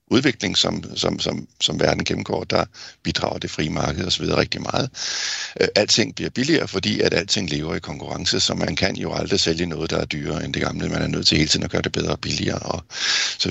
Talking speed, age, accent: 235 wpm, 60-79, native